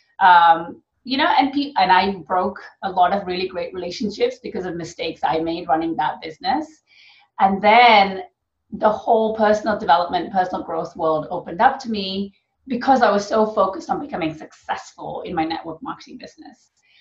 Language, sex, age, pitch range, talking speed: English, female, 30-49, 180-235 Hz, 170 wpm